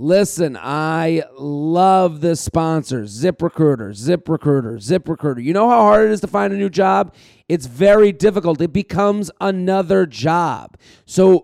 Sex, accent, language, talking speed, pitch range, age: male, American, English, 155 wpm, 155-195 Hz, 40-59